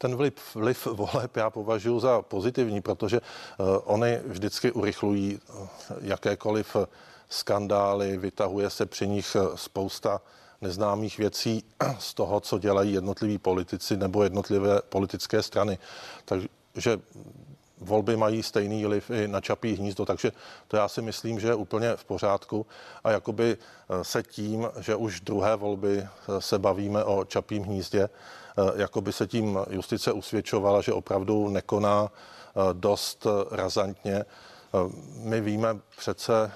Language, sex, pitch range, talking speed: Czech, male, 100-110 Hz, 125 wpm